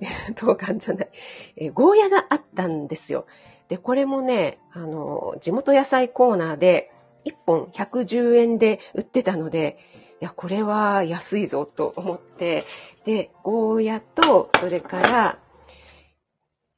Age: 40-59